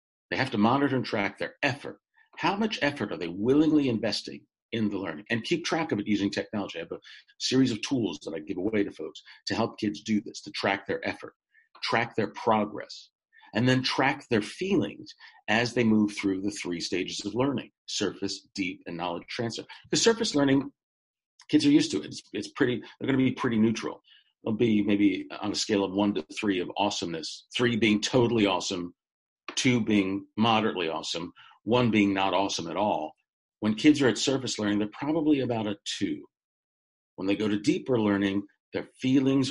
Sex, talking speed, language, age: male, 195 wpm, English, 50-69